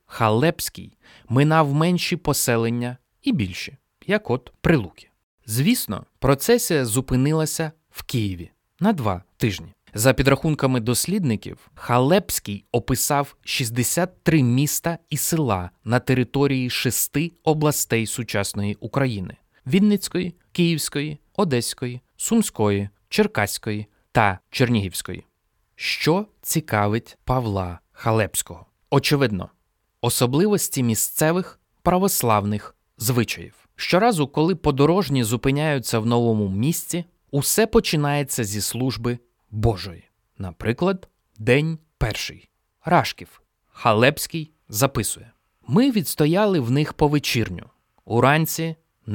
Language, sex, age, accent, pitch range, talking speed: Ukrainian, male, 20-39, native, 115-155 Hz, 90 wpm